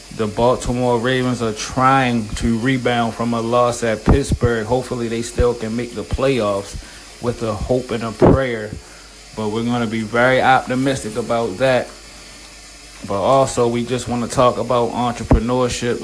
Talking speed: 155 wpm